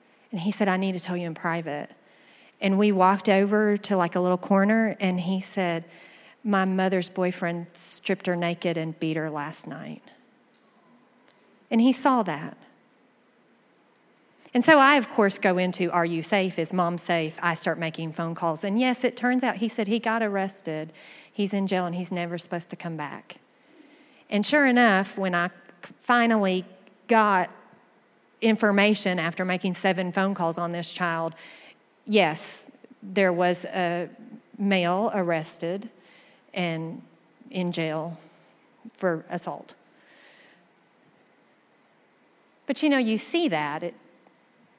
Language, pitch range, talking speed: English, 175-235 Hz, 145 wpm